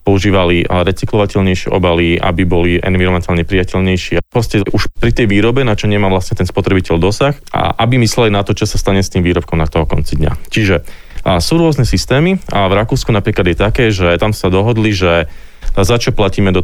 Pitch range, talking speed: 90-110 Hz, 195 wpm